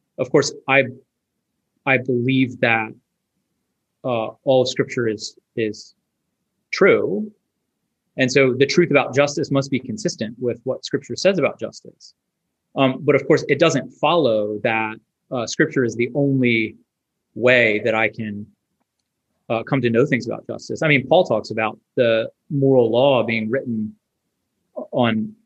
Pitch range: 115-150 Hz